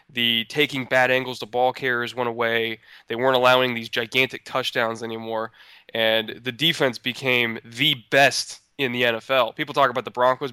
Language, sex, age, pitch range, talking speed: English, male, 20-39, 120-140 Hz, 170 wpm